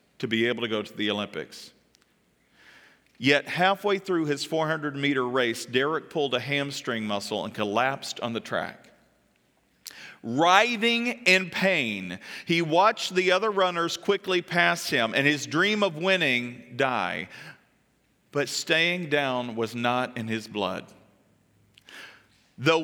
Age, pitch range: 40-59, 130-195 Hz